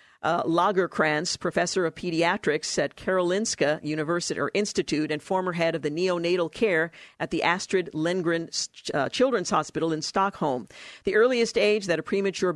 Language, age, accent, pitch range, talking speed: English, 50-69, American, 160-195 Hz, 155 wpm